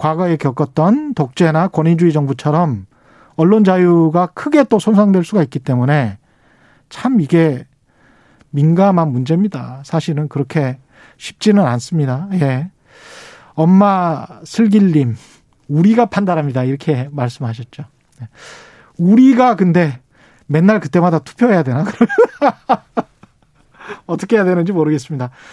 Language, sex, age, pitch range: Korean, male, 40-59, 140-210 Hz